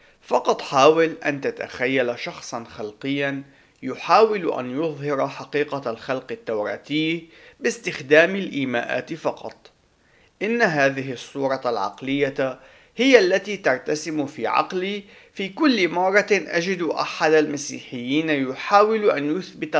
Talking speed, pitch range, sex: 100 wpm, 130-175 Hz, male